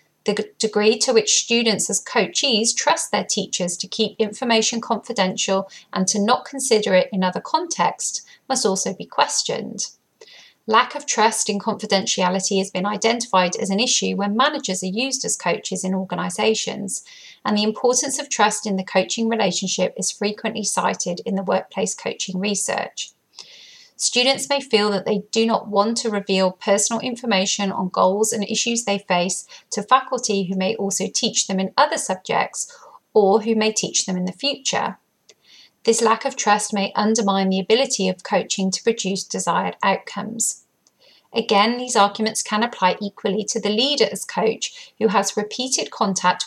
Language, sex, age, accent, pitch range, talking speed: English, female, 30-49, British, 195-235 Hz, 165 wpm